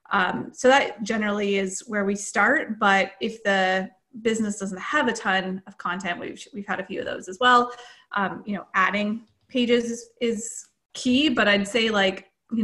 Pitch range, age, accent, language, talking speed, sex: 195-235 Hz, 30-49, American, English, 190 wpm, female